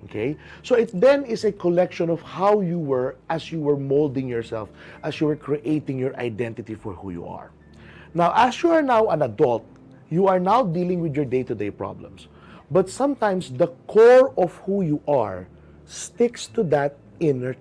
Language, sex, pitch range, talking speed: English, male, 115-190 Hz, 180 wpm